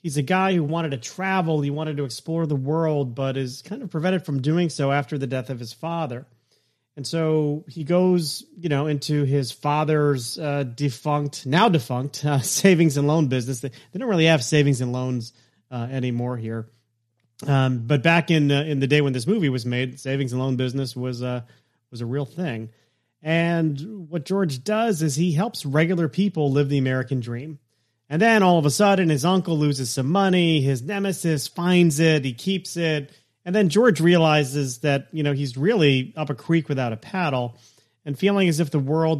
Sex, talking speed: male, 200 wpm